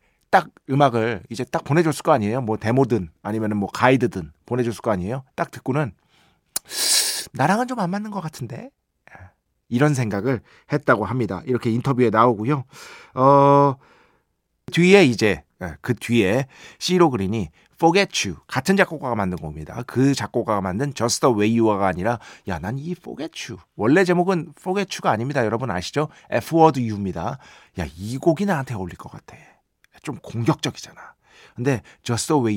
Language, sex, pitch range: Korean, male, 110-155 Hz